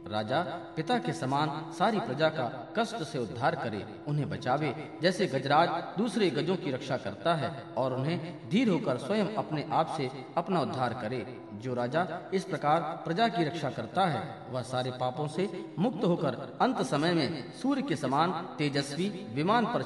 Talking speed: 170 wpm